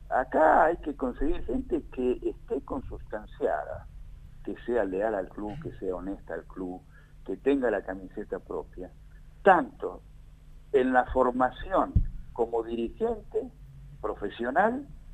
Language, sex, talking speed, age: Spanish, male, 120 wpm, 60-79